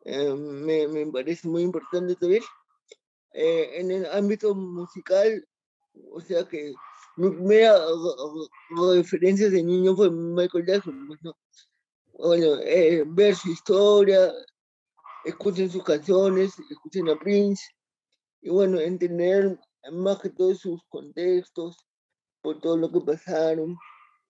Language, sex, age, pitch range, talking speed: Spanish, male, 20-39, 165-200 Hz, 120 wpm